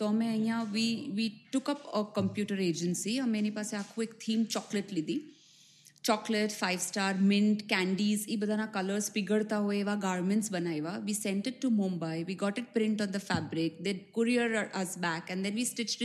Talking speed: 185 wpm